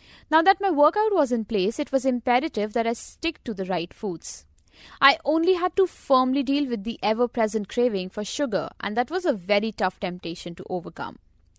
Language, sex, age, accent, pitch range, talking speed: English, female, 20-39, Indian, 185-280 Hz, 195 wpm